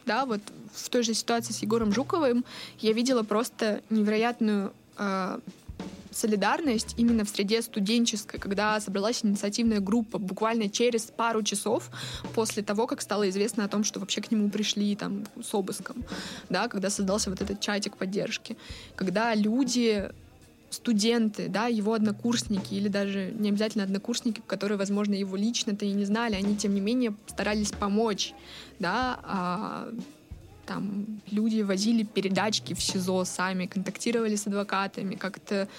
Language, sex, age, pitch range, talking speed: Russian, female, 20-39, 195-225 Hz, 140 wpm